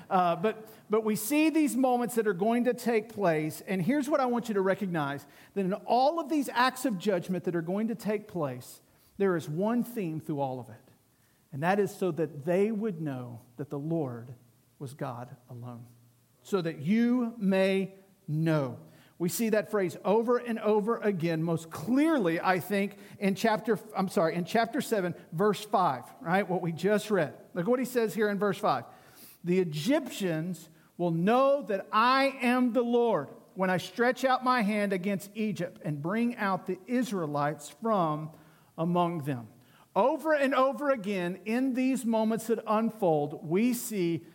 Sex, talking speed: male, 180 wpm